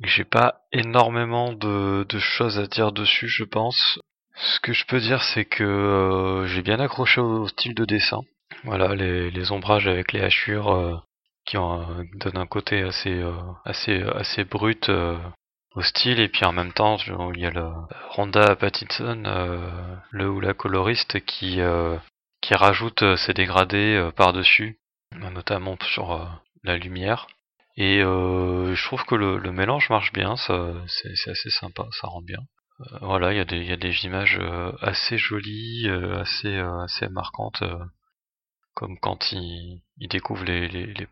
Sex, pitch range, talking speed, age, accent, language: male, 90-105 Hz, 180 wpm, 30-49, French, French